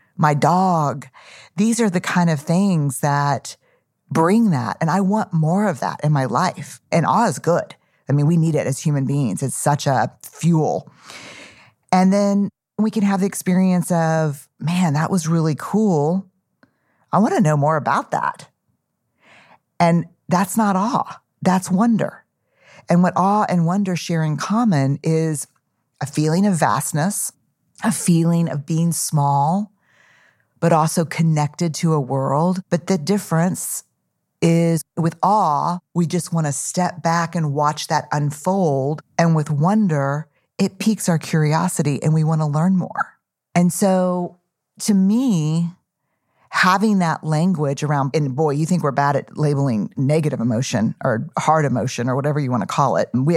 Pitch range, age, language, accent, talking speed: 145-180 Hz, 40-59, English, American, 165 wpm